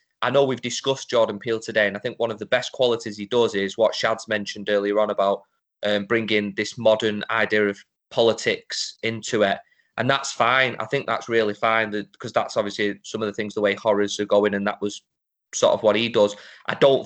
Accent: British